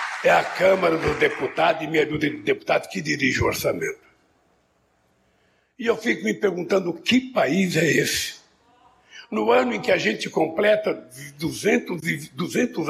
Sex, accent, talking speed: male, Brazilian, 150 wpm